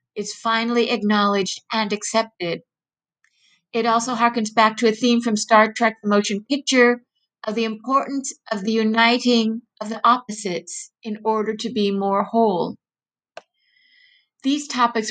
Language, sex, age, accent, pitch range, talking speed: English, female, 50-69, American, 210-245 Hz, 140 wpm